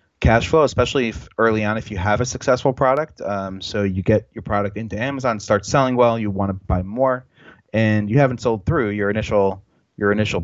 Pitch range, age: 95-115 Hz, 30-49